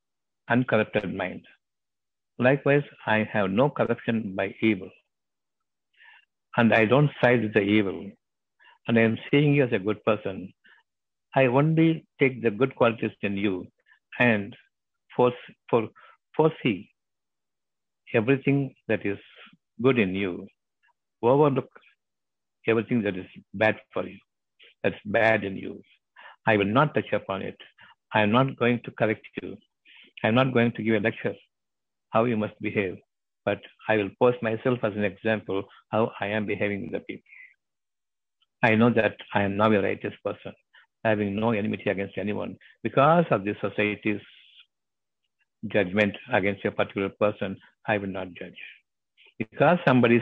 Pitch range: 105-125 Hz